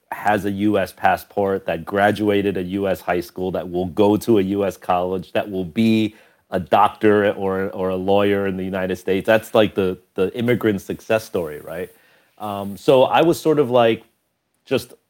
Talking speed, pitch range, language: 185 wpm, 95-110 Hz, German